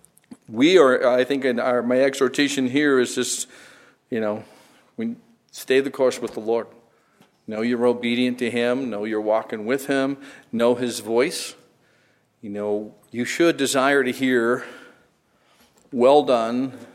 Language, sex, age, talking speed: English, male, 50-69, 150 wpm